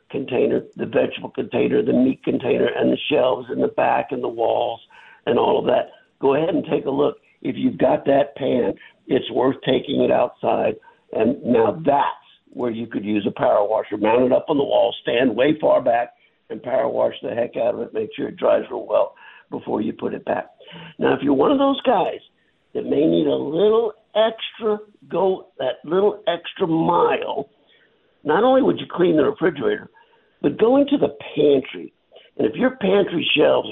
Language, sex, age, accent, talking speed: English, male, 60-79, American, 195 wpm